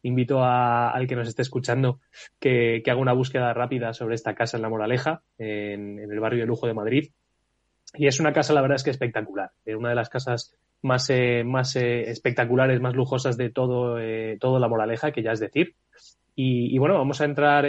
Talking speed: 215 wpm